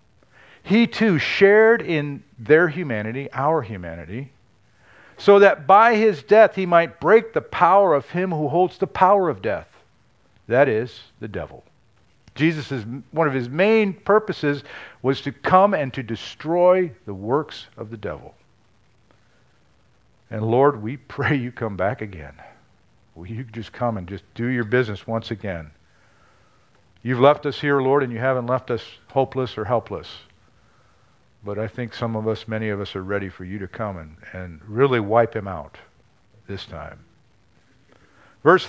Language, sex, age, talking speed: English, male, 50-69, 160 wpm